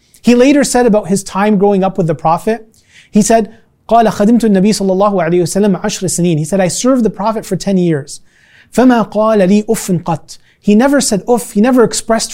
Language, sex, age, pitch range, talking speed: English, male, 30-49, 175-225 Hz, 140 wpm